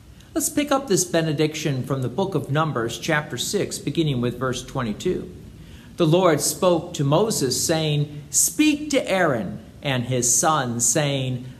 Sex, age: male, 50-69